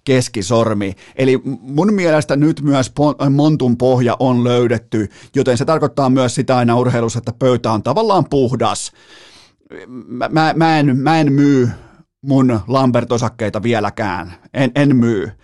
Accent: native